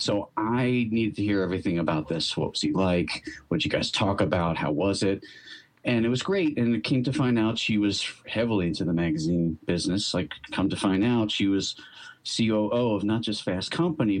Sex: male